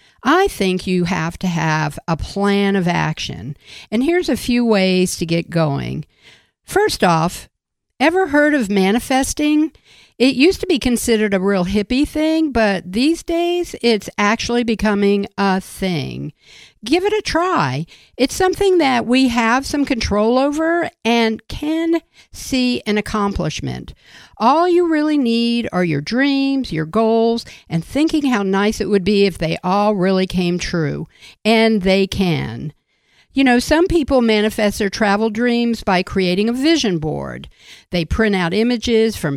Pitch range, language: 185-265 Hz, English